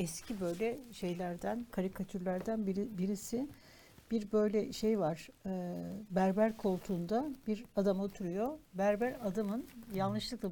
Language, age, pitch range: Turkish, 60-79, 190-240 Hz